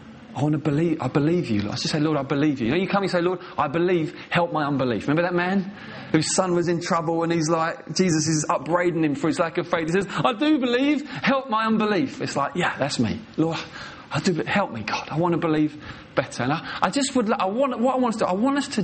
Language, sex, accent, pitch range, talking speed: English, male, British, 120-180 Hz, 280 wpm